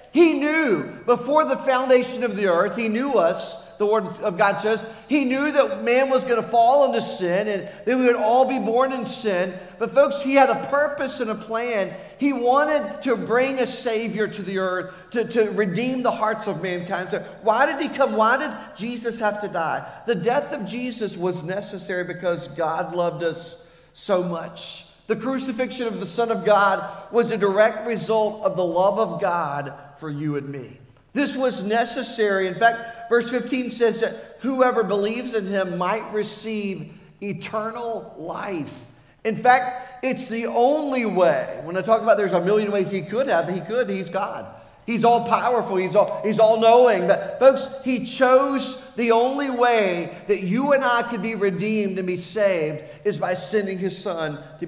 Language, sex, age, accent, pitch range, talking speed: English, male, 50-69, American, 190-245 Hz, 185 wpm